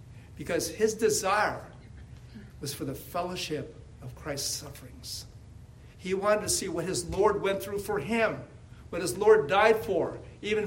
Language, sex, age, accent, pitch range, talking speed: English, male, 60-79, American, 120-175 Hz, 150 wpm